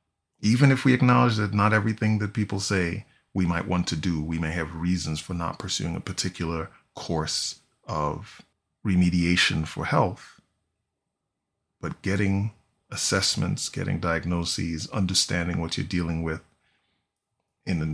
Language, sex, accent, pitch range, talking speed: English, male, American, 80-100 Hz, 135 wpm